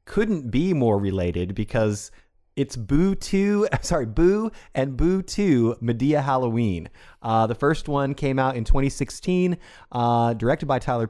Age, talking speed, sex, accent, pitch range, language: 30-49, 150 wpm, male, American, 100-130 Hz, English